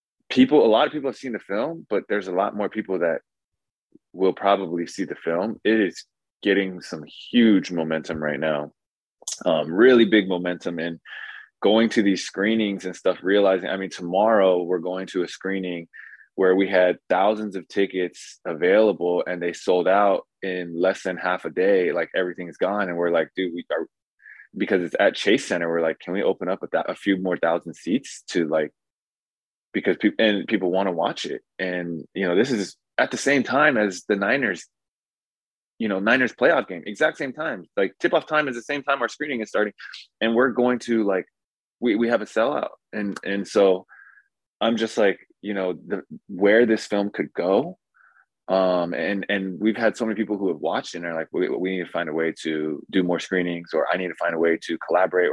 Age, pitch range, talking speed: 20-39, 90-115 Hz, 210 wpm